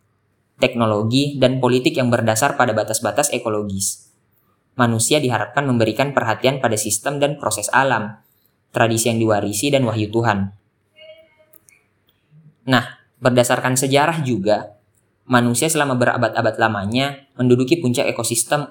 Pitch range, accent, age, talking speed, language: 110-130 Hz, native, 20-39, 110 wpm, Indonesian